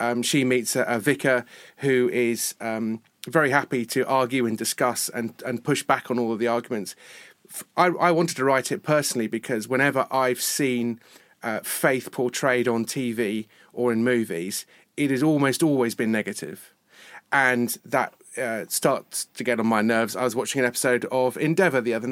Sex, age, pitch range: male, 30-49, 110-135 Hz